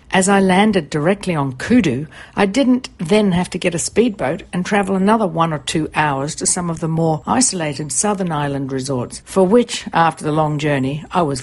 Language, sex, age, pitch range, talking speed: English, female, 60-79, 145-185 Hz, 200 wpm